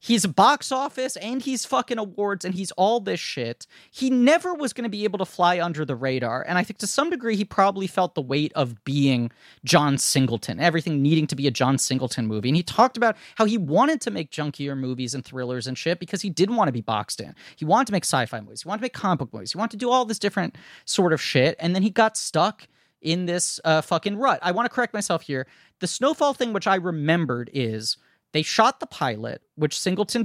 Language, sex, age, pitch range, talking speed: English, male, 30-49, 145-215 Hz, 245 wpm